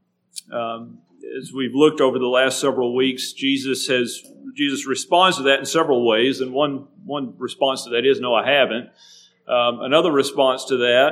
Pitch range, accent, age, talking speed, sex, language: 125-165 Hz, American, 40-59, 180 wpm, male, English